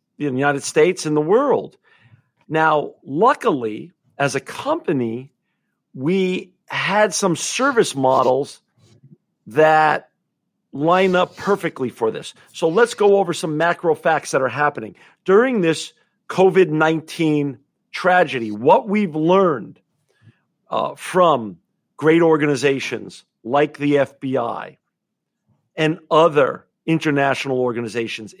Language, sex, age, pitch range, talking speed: English, male, 50-69, 130-170 Hz, 110 wpm